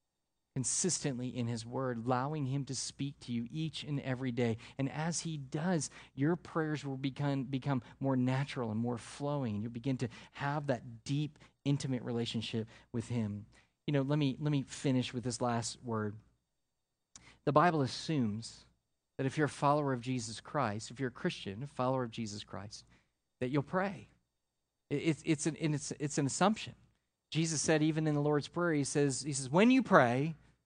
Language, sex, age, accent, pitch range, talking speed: English, male, 40-59, American, 130-170 Hz, 185 wpm